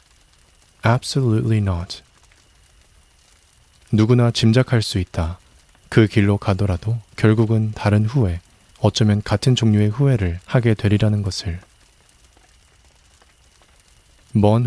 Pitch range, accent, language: 90-115 Hz, native, Korean